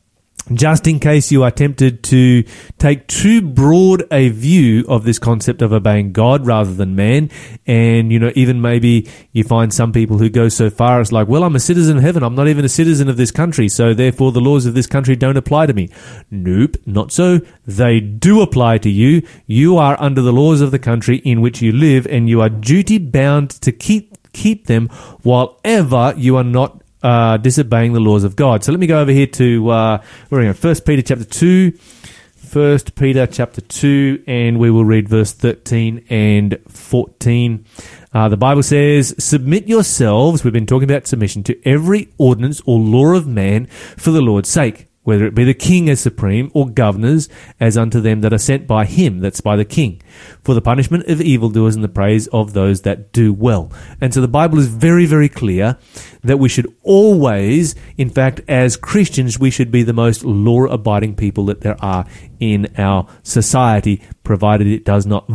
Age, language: 30-49, English